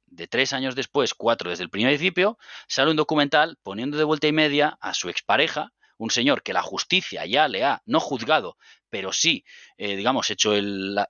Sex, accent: male, Spanish